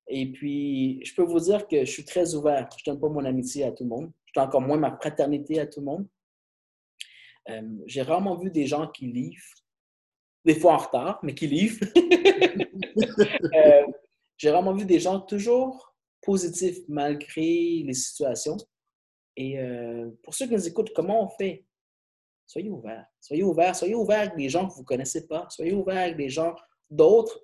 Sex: male